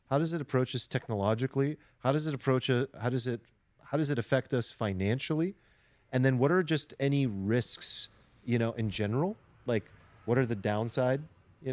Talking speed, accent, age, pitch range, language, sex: 190 wpm, American, 30-49, 105-135 Hz, English, male